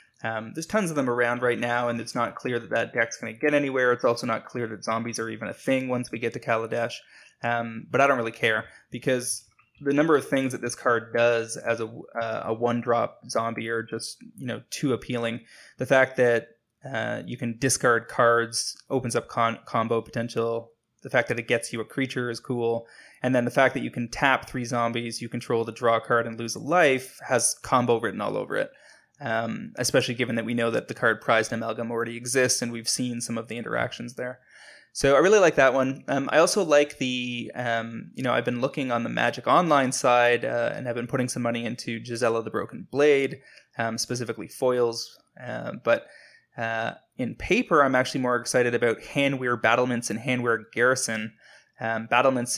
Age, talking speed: 20-39, 210 wpm